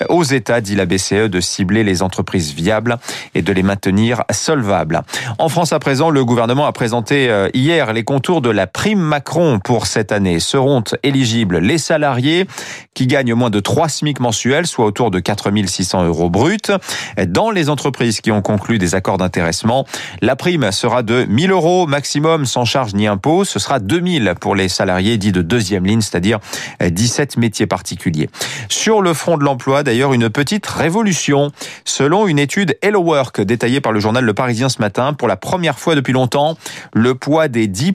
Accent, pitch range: French, 110-160 Hz